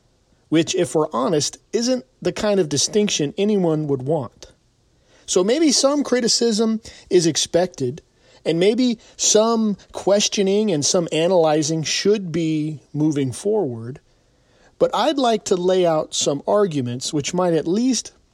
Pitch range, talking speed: 150-210 Hz, 135 wpm